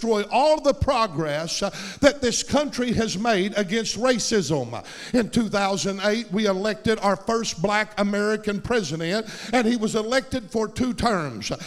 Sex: male